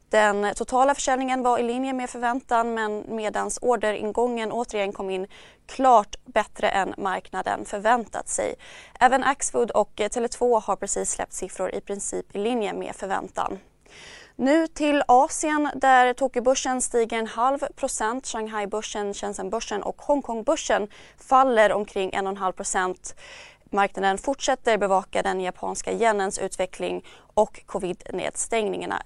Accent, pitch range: native, 200-255 Hz